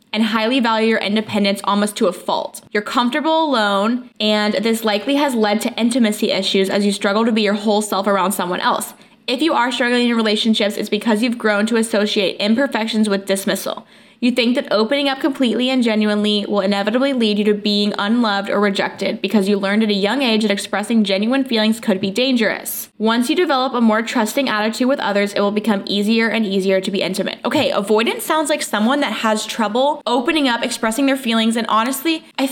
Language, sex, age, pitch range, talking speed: English, female, 10-29, 205-240 Hz, 205 wpm